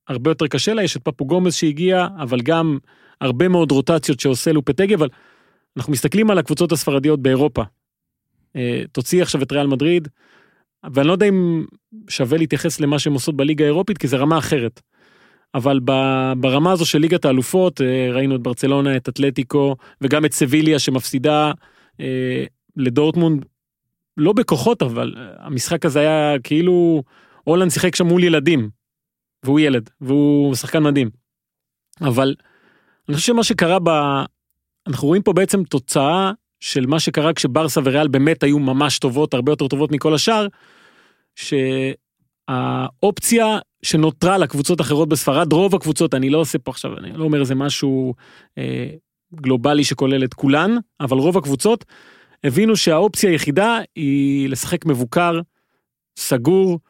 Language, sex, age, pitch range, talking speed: Hebrew, male, 30-49, 135-170 Hz, 140 wpm